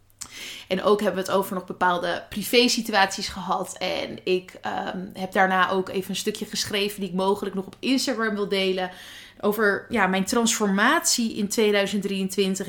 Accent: Dutch